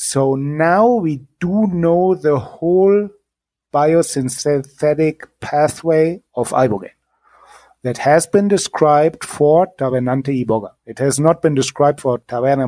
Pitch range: 130-170 Hz